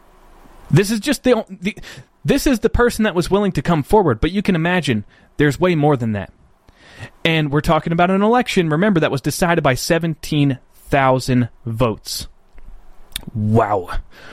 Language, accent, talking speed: English, American, 160 wpm